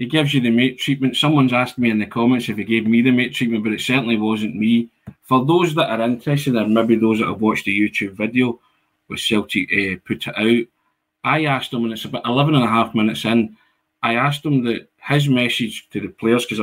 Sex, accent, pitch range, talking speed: male, British, 105-120 Hz, 240 wpm